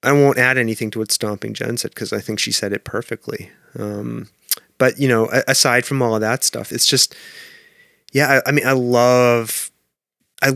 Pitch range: 105-125 Hz